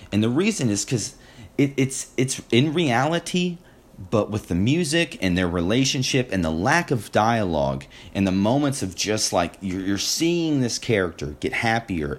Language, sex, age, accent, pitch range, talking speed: English, male, 30-49, American, 90-130 Hz, 165 wpm